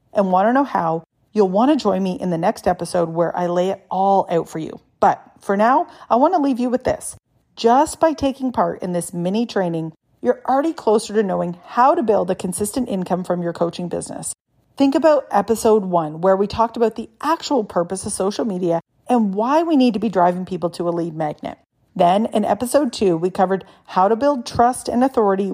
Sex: female